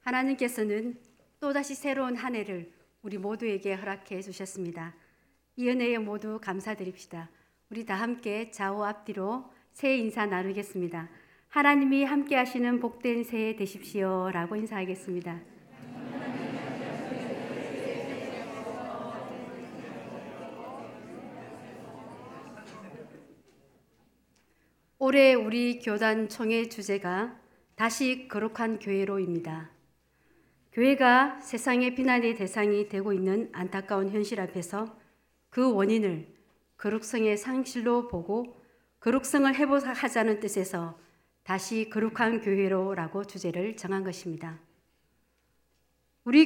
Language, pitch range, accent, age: Korean, 190-245 Hz, native, 60-79